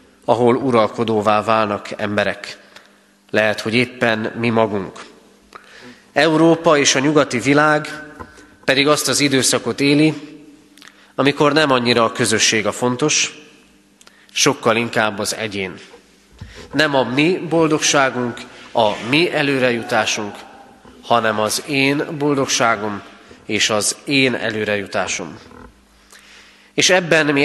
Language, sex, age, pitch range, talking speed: Hungarian, male, 30-49, 105-140 Hz, 105 wpm